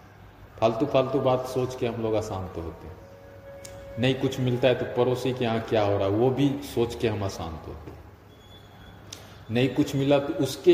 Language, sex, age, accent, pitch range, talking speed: Hindi, male, 40-59, native, 95-125 Hz, 190 wpm